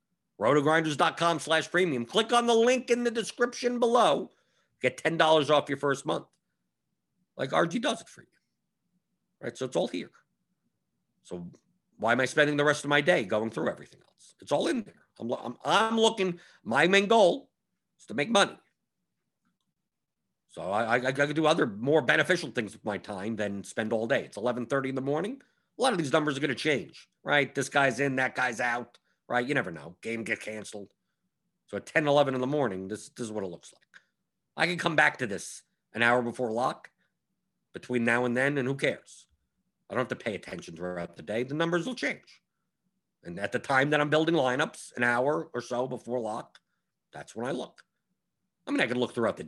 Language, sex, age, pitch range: English, male, 50-69, 120-180 Hz